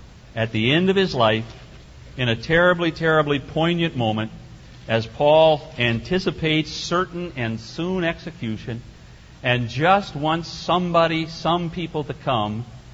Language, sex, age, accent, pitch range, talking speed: English, male, 60-79, American, 110-150 Hz, 125 wpm